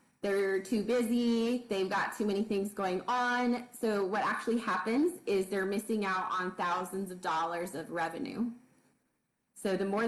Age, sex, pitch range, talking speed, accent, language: 20-39, female, 190-235 Hz, 160 wpm, American, English